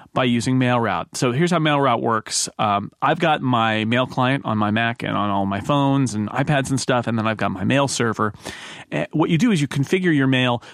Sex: male